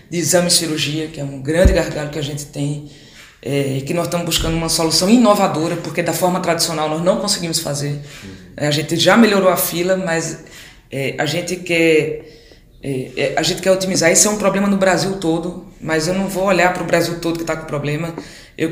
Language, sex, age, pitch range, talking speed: Portuguese, female, 20-39, 160-195 Hz, 215 wpm